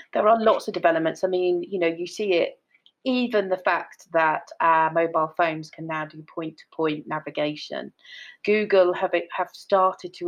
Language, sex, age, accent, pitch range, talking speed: English, female, 30-49, British, 155-180 Hz, 170 wpm